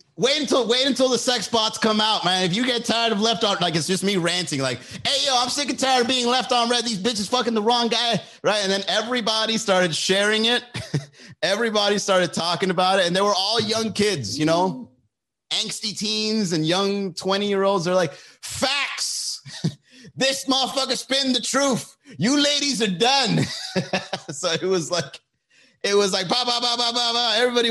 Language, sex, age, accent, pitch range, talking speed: English, male, 30-49, American, 165-225 Hz, 190 wpm